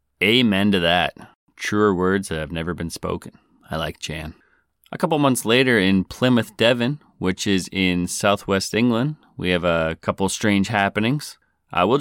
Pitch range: 90-105 Hz